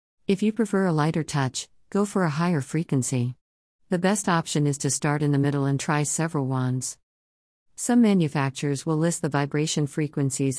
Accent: American